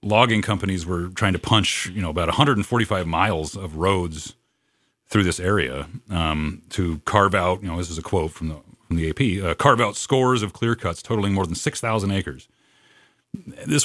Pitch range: 90-110 Hz